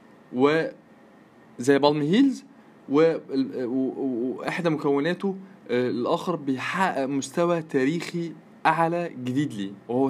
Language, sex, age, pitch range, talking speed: Arabic, male, 20-39, 150-205 Hz, 120 wpm